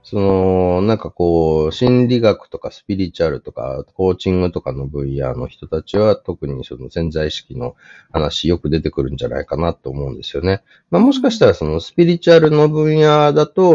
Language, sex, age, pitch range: Japanese, male, 30-49, 75-115 Hz